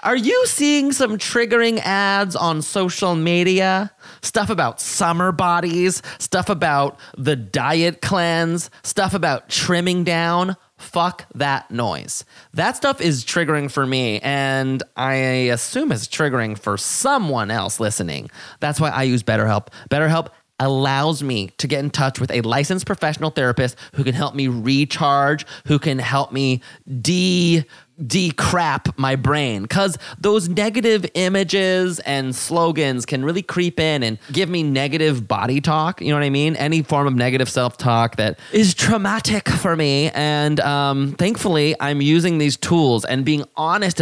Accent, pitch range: American, 135-175 Hz